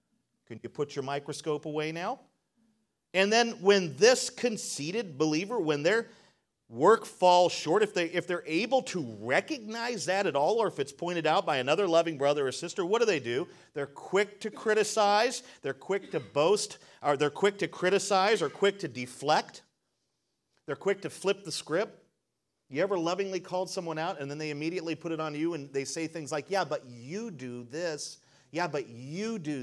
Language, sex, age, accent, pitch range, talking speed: English, male, 40-59, American, 125-190 Hz, 190 wpm